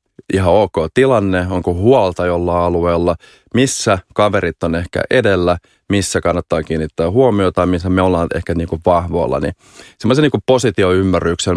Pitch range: 85-100 Hz